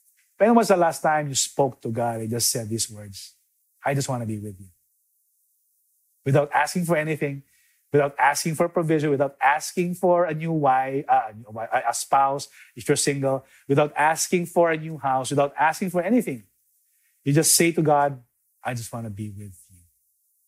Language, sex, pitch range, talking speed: English, male, 125-160 Hz, 185 wpm